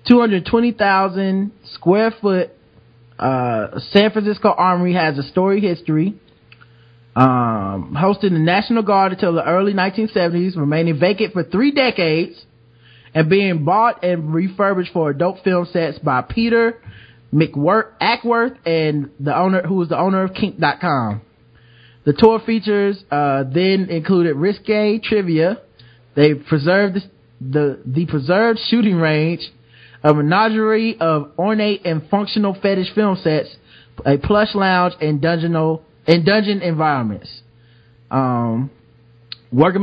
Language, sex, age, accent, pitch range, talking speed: English, male, 20-39, American, 140-195 Hz, 120 wpm